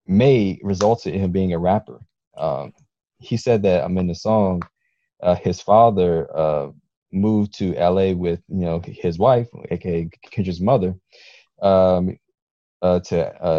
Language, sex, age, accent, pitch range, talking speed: English, male, 20-39, American, 85-105 Hz, 150 wpm